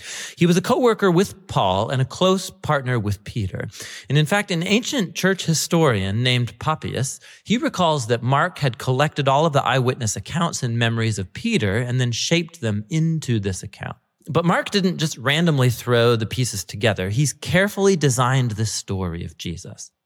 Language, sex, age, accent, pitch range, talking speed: English, male, 30-49, American, 115-170 Hz, 175 wpm